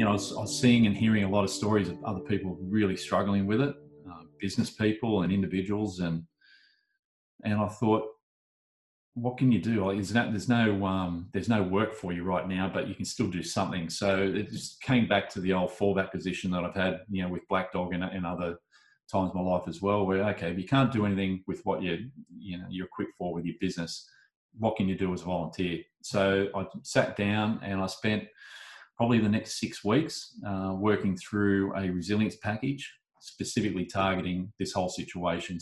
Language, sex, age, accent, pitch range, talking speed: English, male, 30-49, Australian, 90-110 Hz, 210 wpm